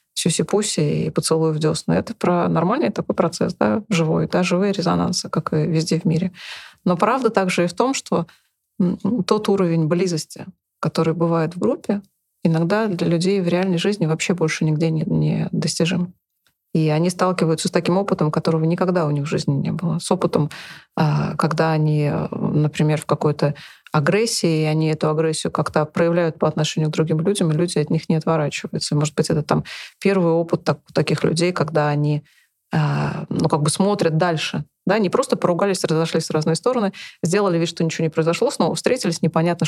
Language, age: Russian, 30-49